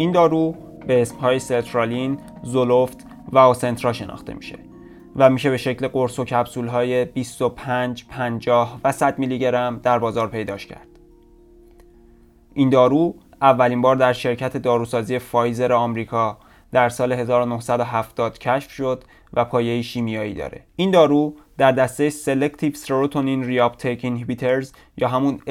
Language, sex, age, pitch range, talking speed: Persian, male, 20-39, 115-130 Hz, 130 wpm